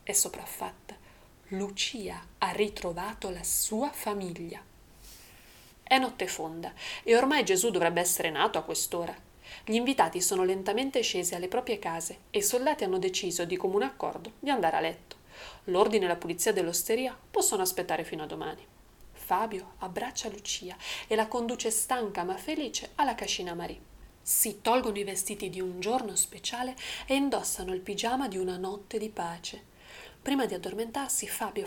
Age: 30-49